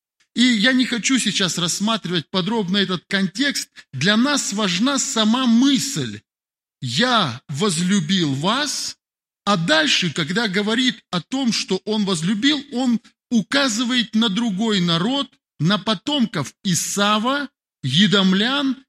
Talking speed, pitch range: 110 wpm, 165-245 Hz